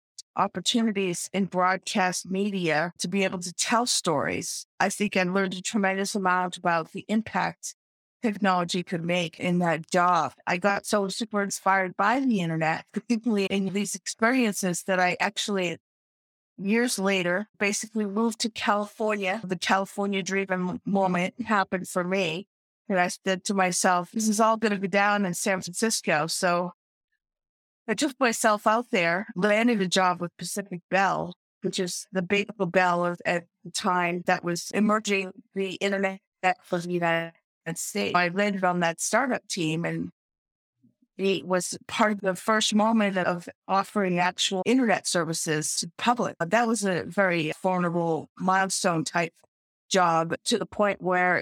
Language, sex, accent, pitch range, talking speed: English, female, American, 180-205 Hz, 155 wpm